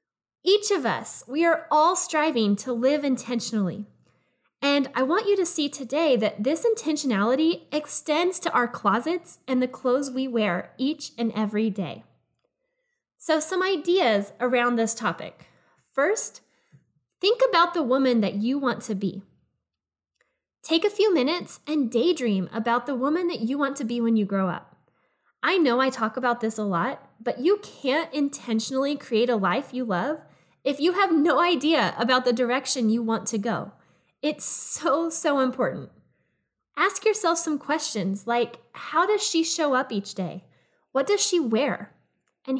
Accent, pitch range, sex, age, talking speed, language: American, 225-320 Hz, female, 10-29, 165 wpm, English